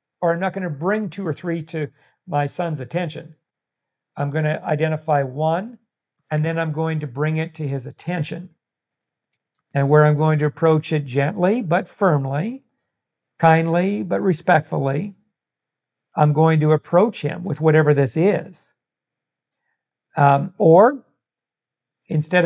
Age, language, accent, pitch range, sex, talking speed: 50-69, English, American, 140-175 Hz, male, 140 wpm